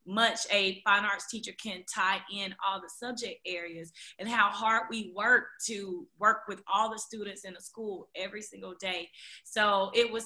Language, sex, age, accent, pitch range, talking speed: English, female, 20-39, American, 185-225 Hz, 185 wpm